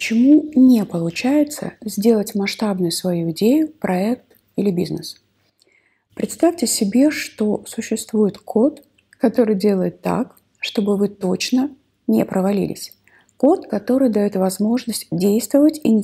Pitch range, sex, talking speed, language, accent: 185-250 Hz, female, 110 wpm, Russian, native